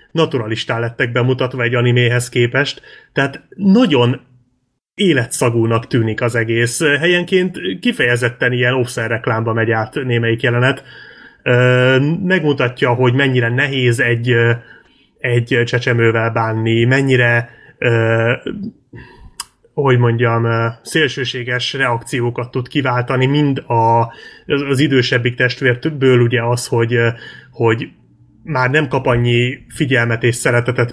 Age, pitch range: 30-49, 120-135 Hz